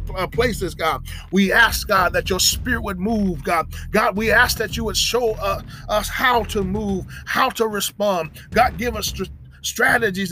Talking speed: 175 wpm